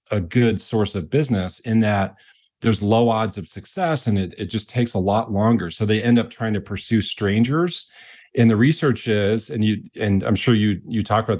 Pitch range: 100-115 Hz